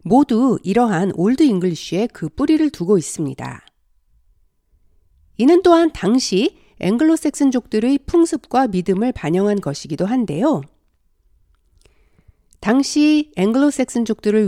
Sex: female